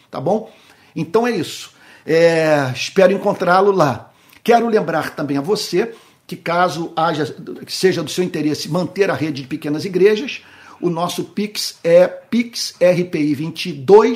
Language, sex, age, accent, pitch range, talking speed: Portuguese, male, 50-69, Brazilian, 155-200 Hz, 135 wpm